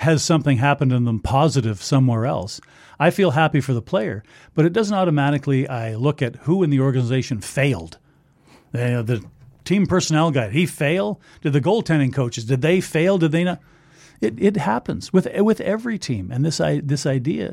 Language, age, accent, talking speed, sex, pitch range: English, 50-69, American, 190 wpm, male, 130-165 Hz